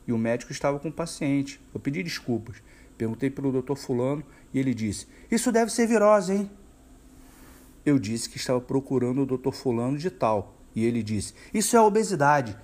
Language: Portuguese